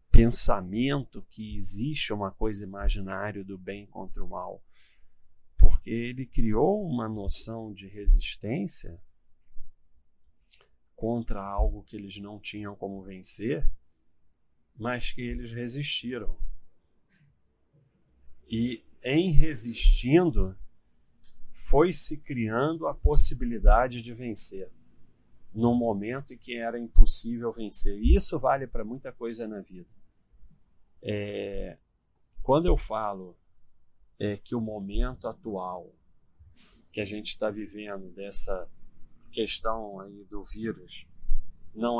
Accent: Brazilian